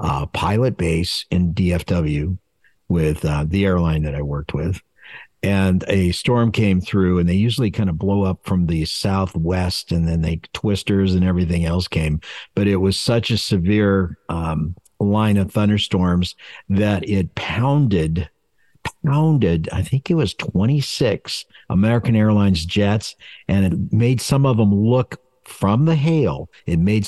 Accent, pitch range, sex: American, 85-105 Hz, male